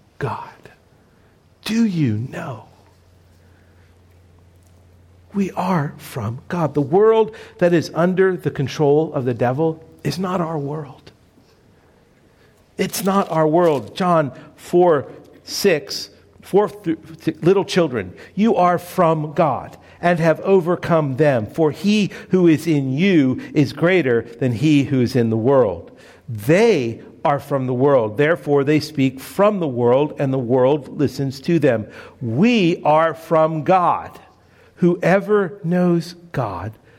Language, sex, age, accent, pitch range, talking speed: English, male, 50-69, American, 125-175 Hz, 130 wpm